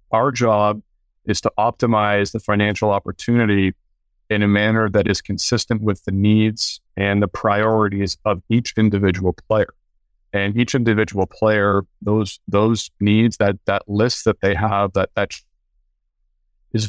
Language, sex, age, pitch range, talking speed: English, male, 40-59, 100-110 Hz, 140 wpm